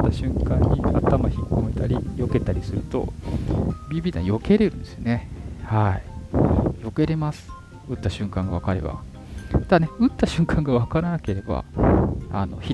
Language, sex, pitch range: Japanese, male, 90-140 Hz